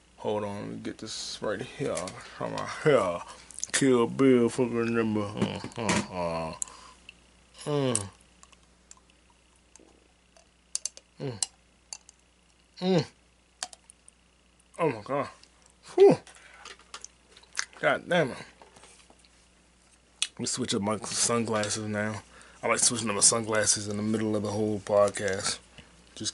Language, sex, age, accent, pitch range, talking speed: English, male, 20-39, American, 85-130 Hz, 90 wpm